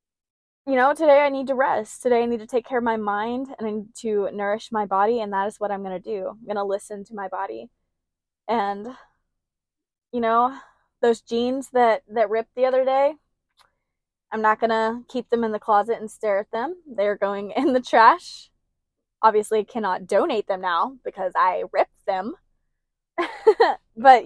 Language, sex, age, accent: English, female, 20-39, American